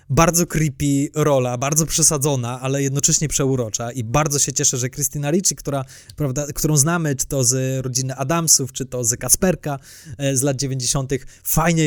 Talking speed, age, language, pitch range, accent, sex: 155 wpm, 20-39, Polish, 125-155 Hz, native, male